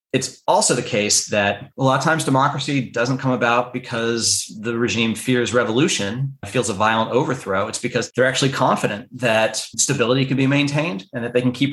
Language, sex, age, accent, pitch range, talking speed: English, male, 30-49, American, 110-135 Hz, 190 wpm